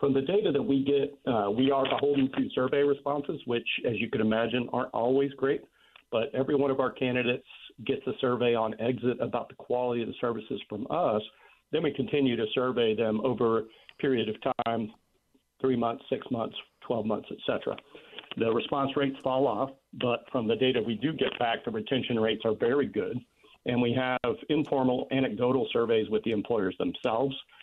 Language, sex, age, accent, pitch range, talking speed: English, male, 50-69, American, 110-135 Hz, 190 wpm